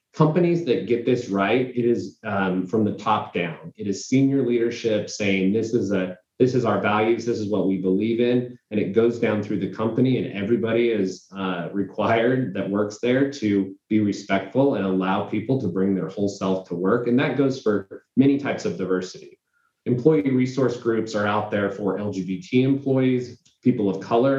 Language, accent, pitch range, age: English, American, 100-125 Hz, 30-49